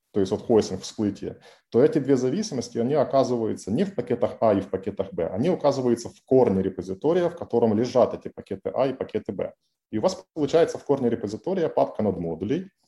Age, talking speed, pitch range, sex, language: 20-39, 195 wpm, 105-140 Hz, male, Ukrainian